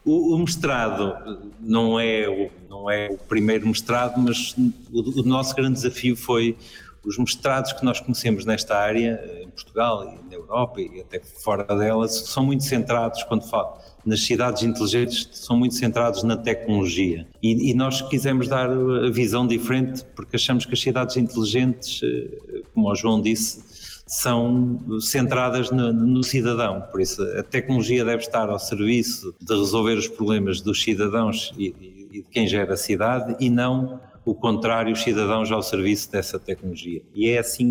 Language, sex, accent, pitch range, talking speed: Portuguese, male, Portuguese, 110-125 Hz, 165 wpm